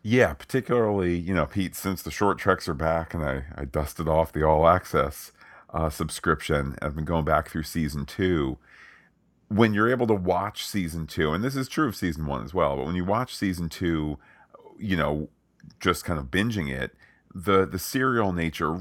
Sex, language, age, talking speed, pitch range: male, English, 40-59, 195 wpm, 80-105 Hz